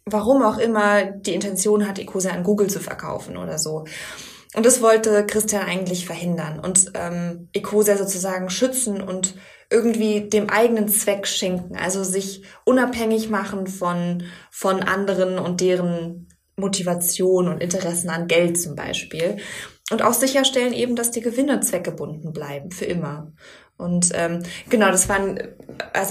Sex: female